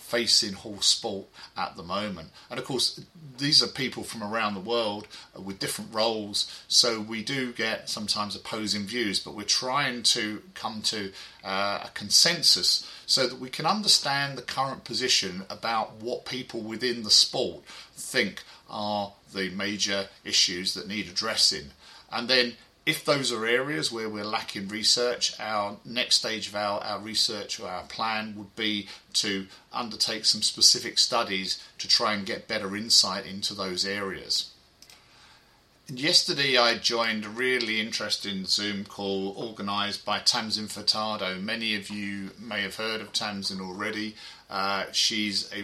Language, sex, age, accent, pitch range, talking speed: English, male, 40-59, British, 100-120 Hz, 155 wpm